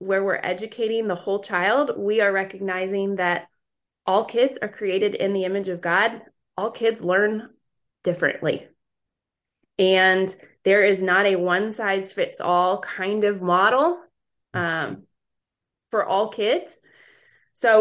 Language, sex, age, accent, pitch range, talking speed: English, female, 20-39, American, 175-210 Hz, 135 wpm